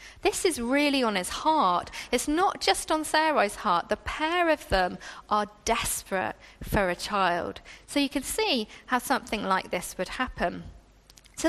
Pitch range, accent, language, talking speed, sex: 215-310 Hz, British, English, 165 wpm, female